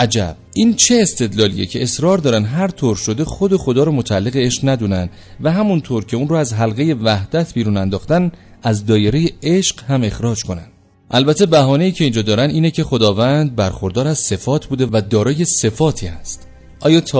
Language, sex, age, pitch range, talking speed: Persian, male, 30-49, 105-145 Hz, 180 wpm